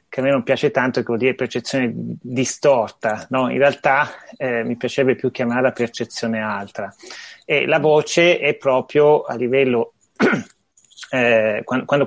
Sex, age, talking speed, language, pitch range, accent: male, 30-49, 145 wpm, Italian, 120-145 Hz, native